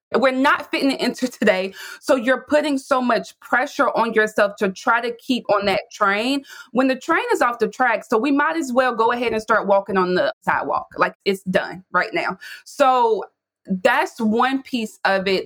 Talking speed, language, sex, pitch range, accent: 200 wpm, English, female, 175-220 Hz, American